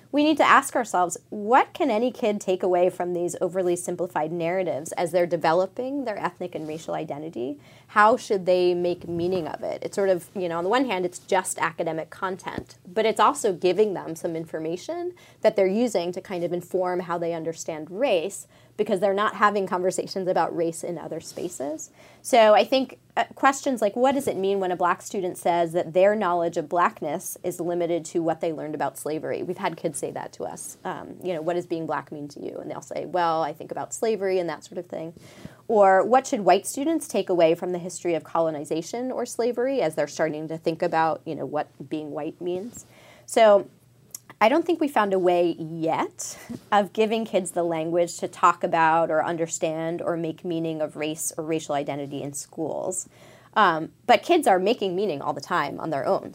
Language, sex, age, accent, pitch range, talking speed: English, female, 20-39, American, 165-200 Hz, 210 wpm